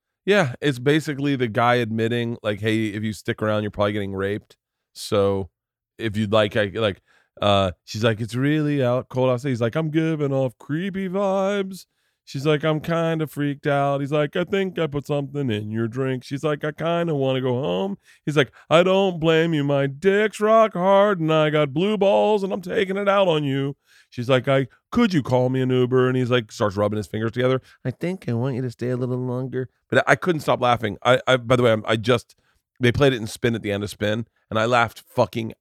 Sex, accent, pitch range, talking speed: male, American, 115-160 Hz, 235 wpm